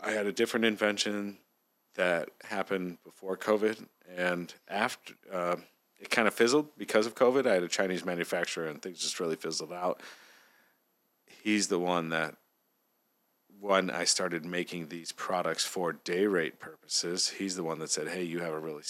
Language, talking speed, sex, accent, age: English, 170 wpm, male, American, 40-59